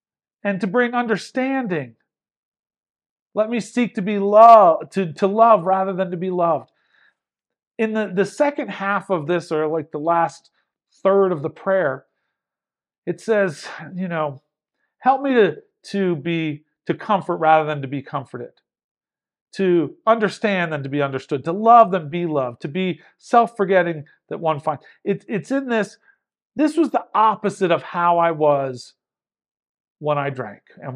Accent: American